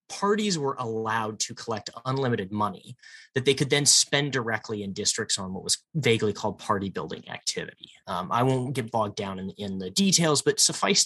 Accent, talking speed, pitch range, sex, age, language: American, 190 wpm, 105-140 Hz, male, 30-49, English